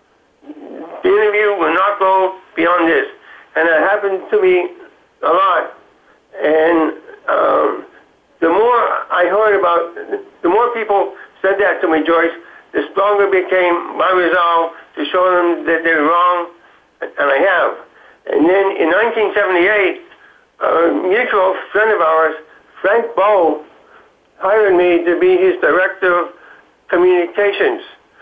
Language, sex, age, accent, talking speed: English, male, 60-79, American, 130 wpm